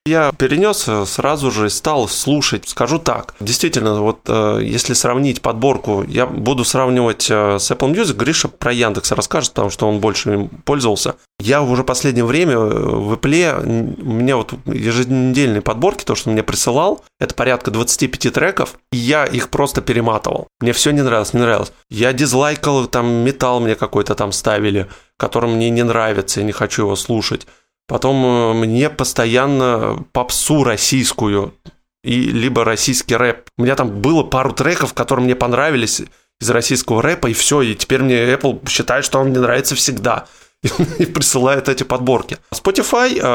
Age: 20-39